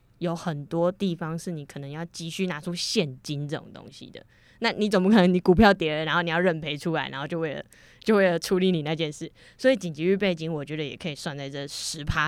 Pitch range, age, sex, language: 155-195 Hz, 20-39, female, Chinese